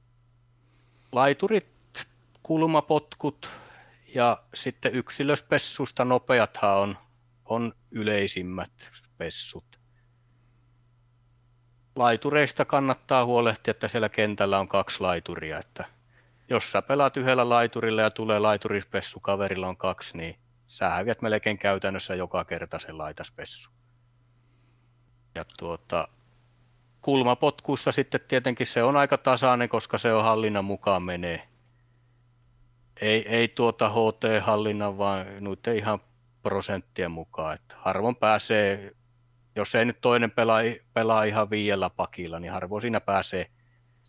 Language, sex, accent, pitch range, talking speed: Finnish, male, native, 105-120 Hz, 105 wpm